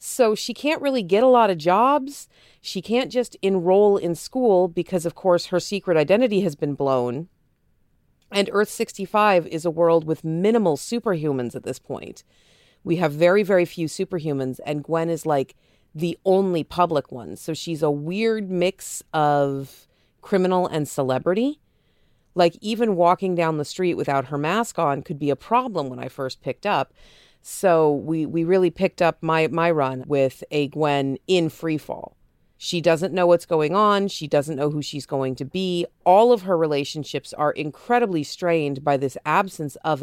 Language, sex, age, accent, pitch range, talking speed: English, female, 40-59, American, 145-195 Hz, 175 wpm